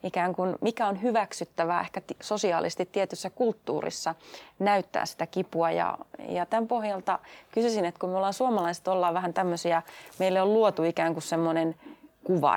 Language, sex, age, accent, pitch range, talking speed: Finnish, female, 30-49, native, 175-220 Hz, 150 wpm